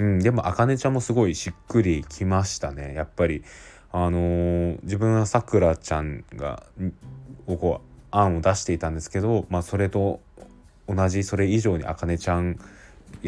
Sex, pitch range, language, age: male, 80-105 Hz, Japanese, 20-39